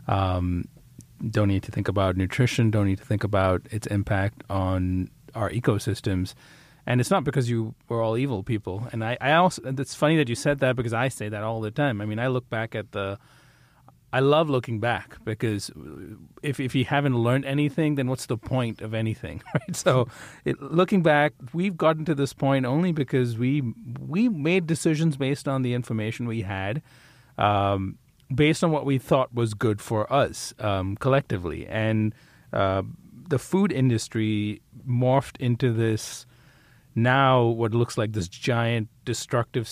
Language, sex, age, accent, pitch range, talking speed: English, male, 30-49, American, 110-135 Hz, 175 wpm